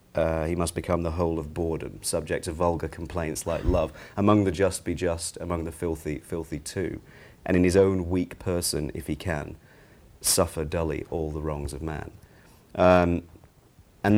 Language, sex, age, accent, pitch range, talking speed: English, male, 40-59, British, 80-95 Hz, 180 wpm